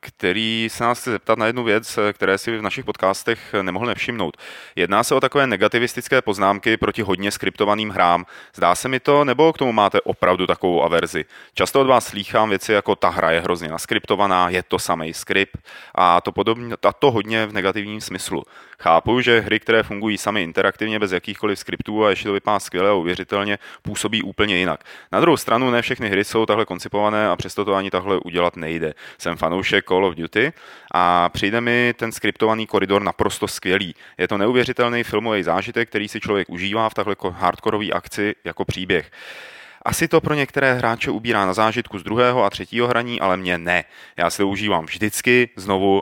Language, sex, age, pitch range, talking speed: Czech, male, 30-49, 95-115 Hz, 185 wpm